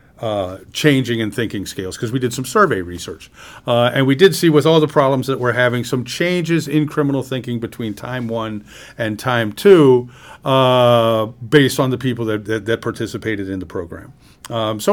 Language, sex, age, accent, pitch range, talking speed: English, male, 50-69, American, 115-150 Hz, 195 wpm